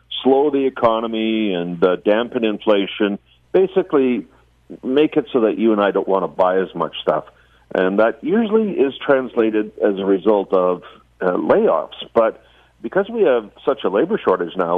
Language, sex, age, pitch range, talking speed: English, male, 50-69, 95-140 Hz, 170 wpm